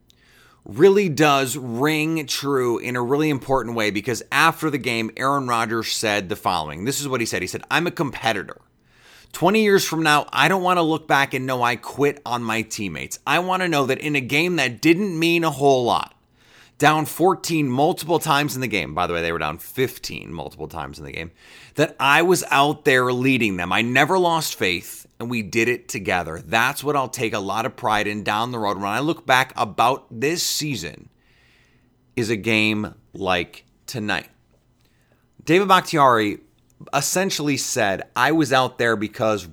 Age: 30-49